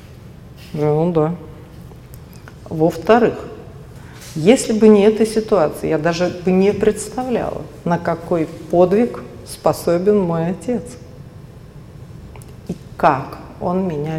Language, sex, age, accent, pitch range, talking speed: Russian, female, 50-69, native, 160-230 Hz, 95 wpm